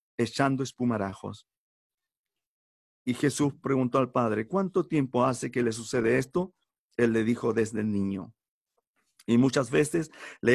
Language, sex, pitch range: Spanish, male, 105-135 Hz